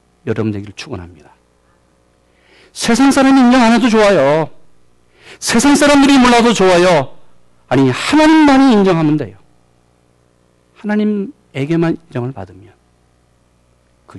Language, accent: Korean, native